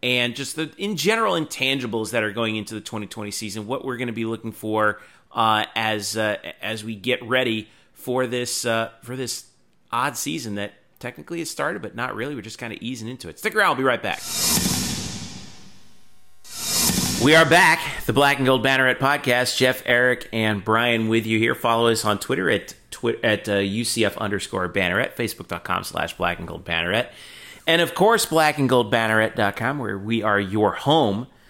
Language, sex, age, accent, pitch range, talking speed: English, male, 30-49, American, 105-130 Hz, 185 wpm